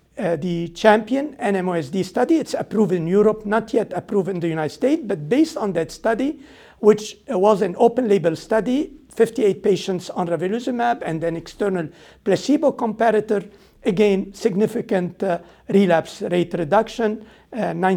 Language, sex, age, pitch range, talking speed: English, male, 50-69, 180-230 Hz, 135 wpm